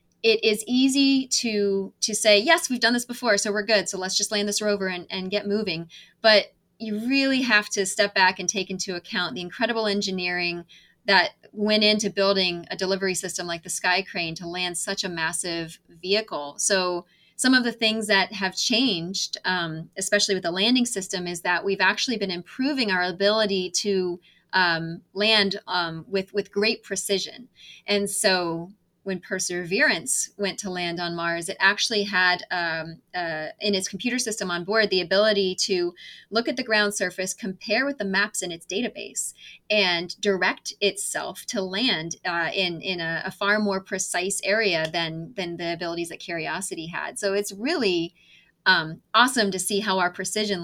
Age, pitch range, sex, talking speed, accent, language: 30-49, 175-210 Hz, female, 180 wpm, American, English